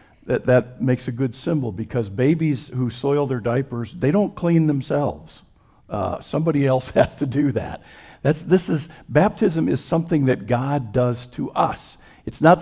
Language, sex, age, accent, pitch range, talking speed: English, male, 60-79, American, 115-145 Hz, 170 wpm